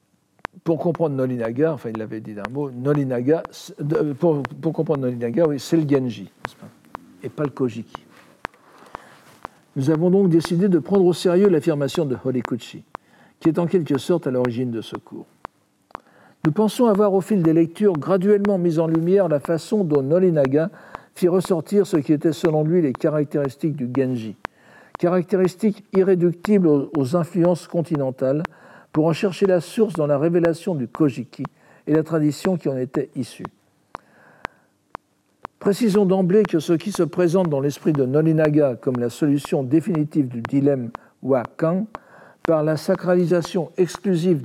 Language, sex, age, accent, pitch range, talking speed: French, male, 60-79, French, 145-185 Hz, 155 wpm